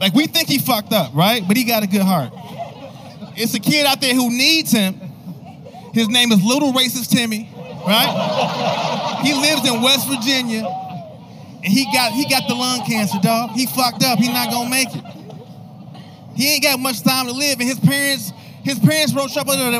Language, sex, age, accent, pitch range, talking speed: English, male, 30-49, American, 185-240 Hz, 200 wpm